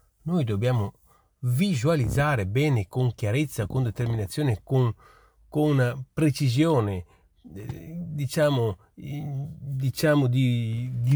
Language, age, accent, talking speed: Italian, 40-59, native, 80 wpm